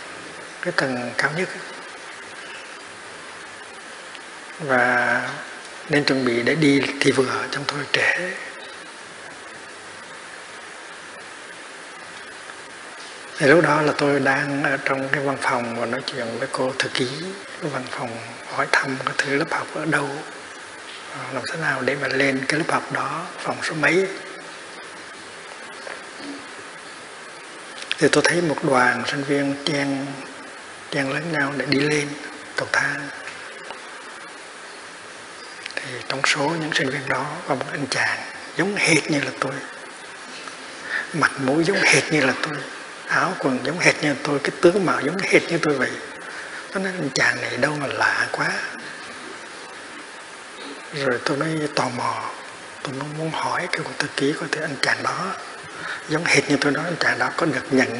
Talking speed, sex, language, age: 155 wpm, male, Vietnamese, 60-79